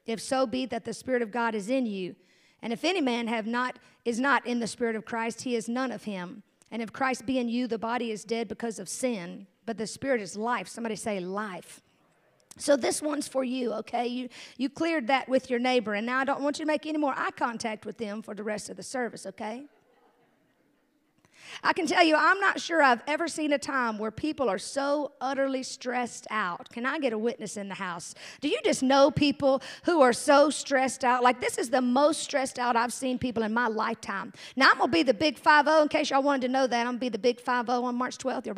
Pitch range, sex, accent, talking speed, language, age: 235-300 Hz, female, American, 250 wpm, English, 50-69